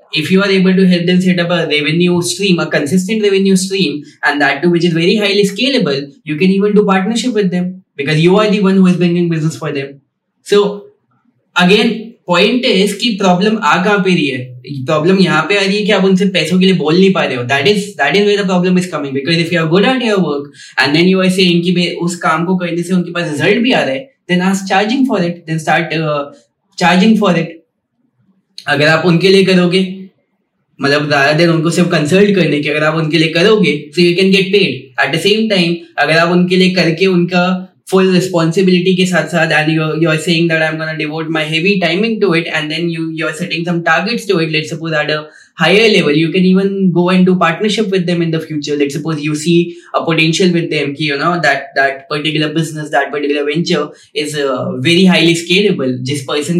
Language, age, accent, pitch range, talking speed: English, 20-39, Indian, 155-190 Hz, 200 wpm